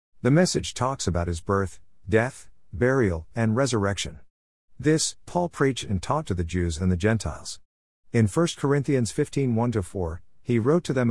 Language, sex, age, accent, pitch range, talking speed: English, male, 50-69, American, 90-115 Hz, 160 wpm